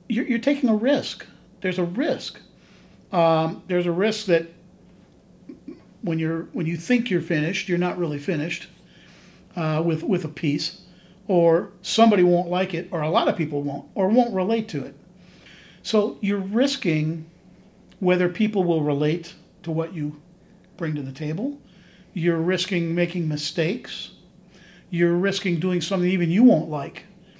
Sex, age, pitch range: male, 50-69, 170-215 Hz